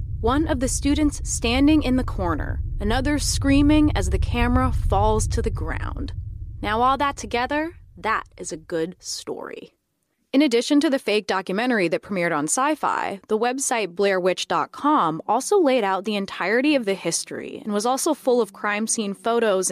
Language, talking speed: English, 170 wpm